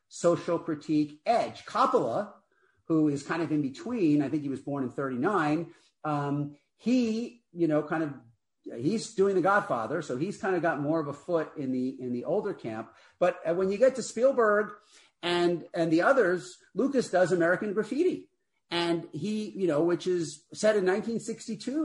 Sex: male